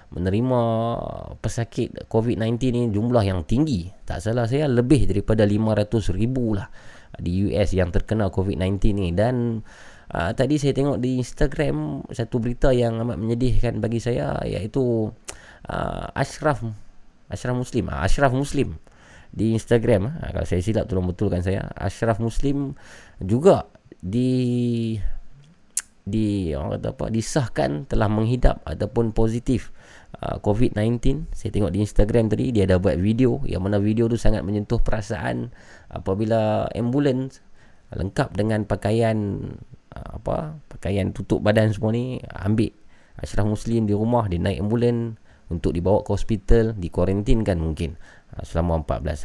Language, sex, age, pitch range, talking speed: Malay, male, 20-39, 100-125 Hz, 130 wpm